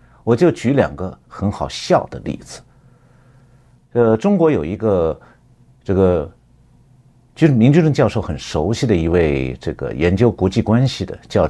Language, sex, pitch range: Chinese, male, 95-135 Hz